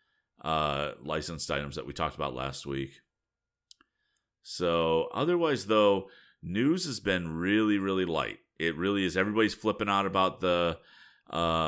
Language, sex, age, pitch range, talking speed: English, male, 40-59, 85-105 Hz, 140 wpm